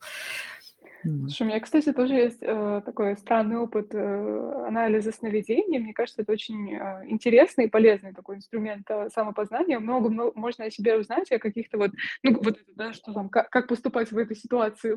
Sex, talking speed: female, 175 wpm